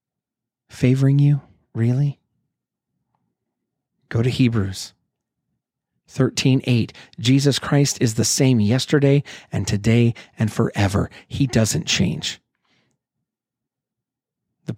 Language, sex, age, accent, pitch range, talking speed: English, male, 40-59, American, 110-135 Hz, 90 wpm